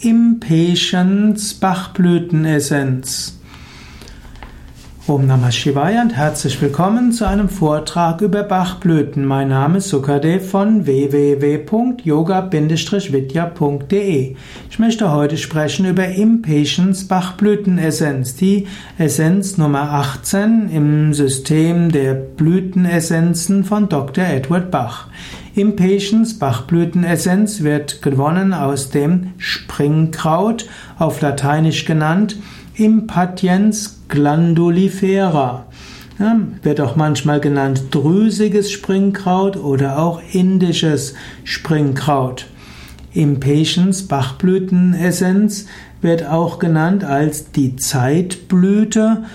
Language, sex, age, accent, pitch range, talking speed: German, male, 60-79, German, 145-190 Hz, 85 wpm